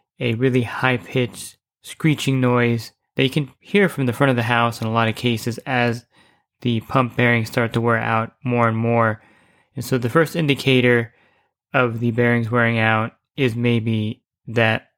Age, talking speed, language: 20-39, 175 wpm, English